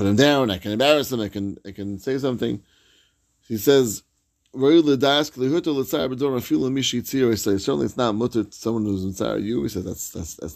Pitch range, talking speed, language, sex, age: 100-130 Hz, 155 wpm, English, male, 30-49